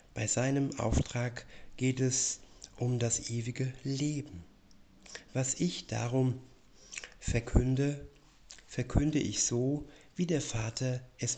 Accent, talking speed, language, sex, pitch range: German, 105 wpm, German, male, 120-135 Hz